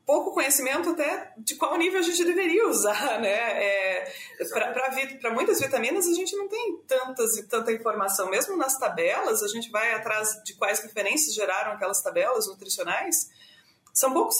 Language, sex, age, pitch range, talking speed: Portuguese, female, 30-49, 205-310 Hz, 165 wpm